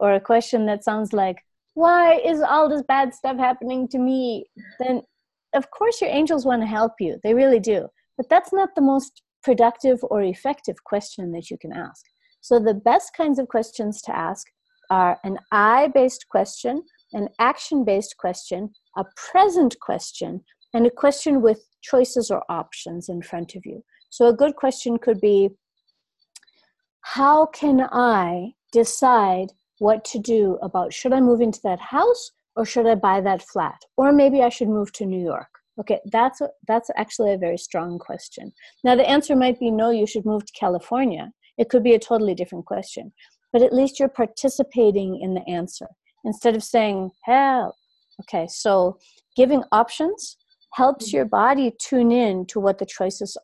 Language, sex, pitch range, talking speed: English, female, 205-270 Hz, 175 wpm